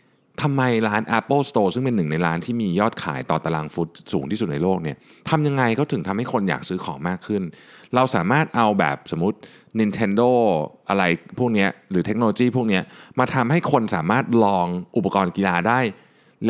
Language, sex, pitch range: Thai, male, 90-125 Hz